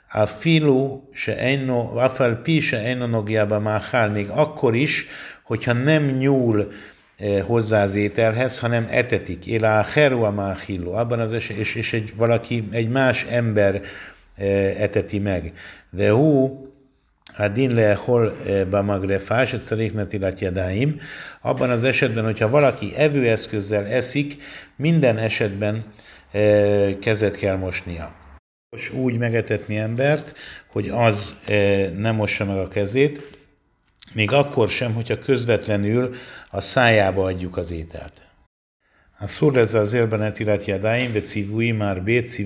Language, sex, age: Hungarian, male, 50-69